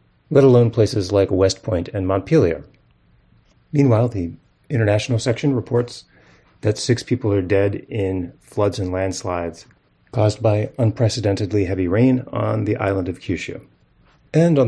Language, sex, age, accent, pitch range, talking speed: English, male, 30-49, American, 95-120 Hz, 140 wpm